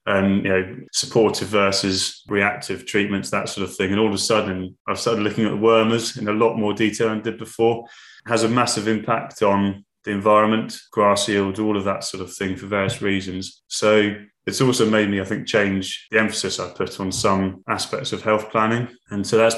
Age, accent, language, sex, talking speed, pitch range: 20-39, British, English, male, 220 wpm, 95-110 Hz